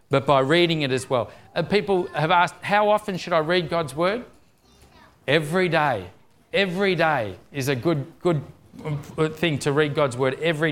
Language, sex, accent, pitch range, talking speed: English, male, Australian, 135-175 Hz, 170 wpm